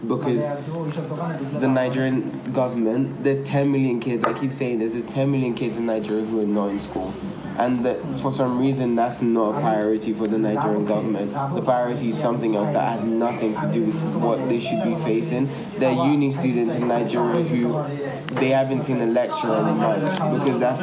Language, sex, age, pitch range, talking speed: English, male, 20-39, 115-135 Hz, 195 wpm